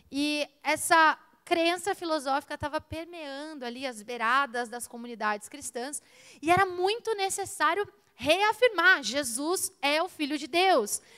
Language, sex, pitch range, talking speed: Portuguese, female, 250-330 Hz, 125 wpm